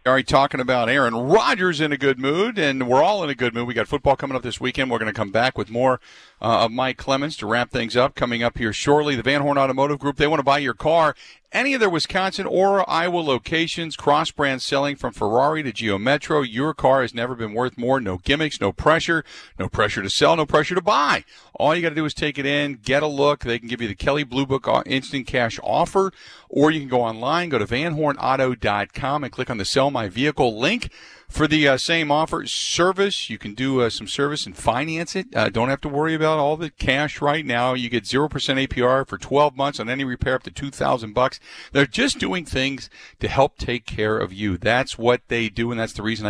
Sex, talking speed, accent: male, 235 wpm, American